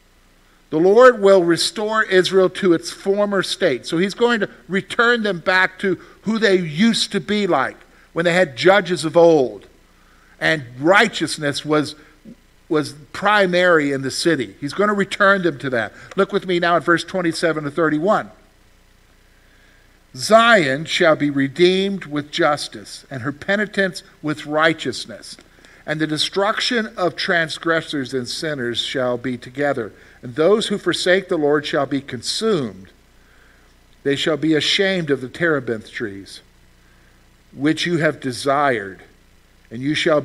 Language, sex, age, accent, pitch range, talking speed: English, male, 50-69, American, 125-180 Hz, 145 wpm